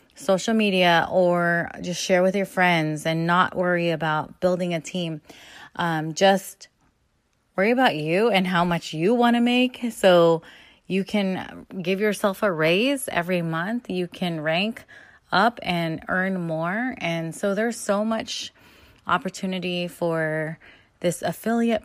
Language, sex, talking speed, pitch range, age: English, female, 145 wpm, 165-210 Hz, 20-39